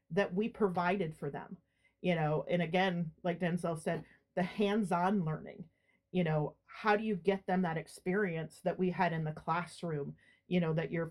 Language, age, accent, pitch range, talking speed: English, 40-59, American, 165-190 Hz, 185 wpm